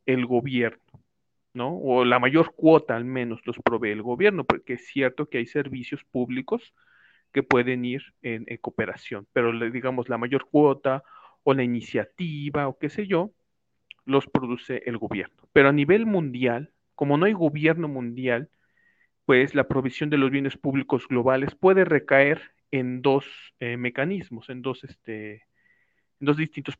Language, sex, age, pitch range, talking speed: Spanish, male, 40-59, 125-160 Hz, 160 wpm